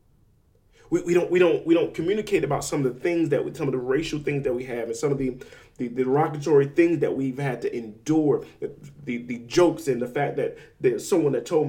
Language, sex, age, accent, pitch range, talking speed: English, male, 30-49, American, 110-170 Hz, 245 wpm